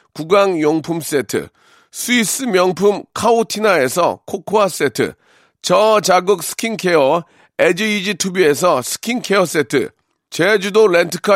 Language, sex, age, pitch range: Korean, male, 40-59, 170-220 Hz